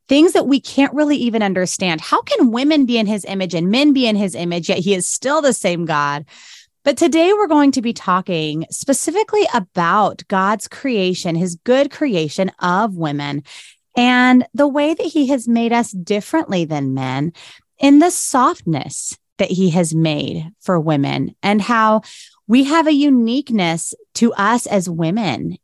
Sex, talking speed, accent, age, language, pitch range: female, 170 wpm, American, 30-49, English, 175-265 Hz